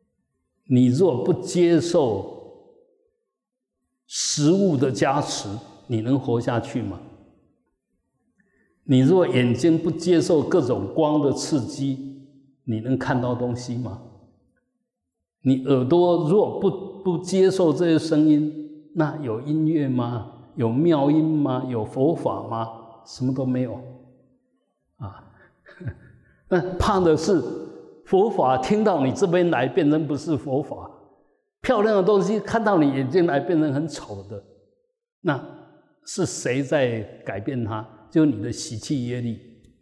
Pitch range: 125-180 Hz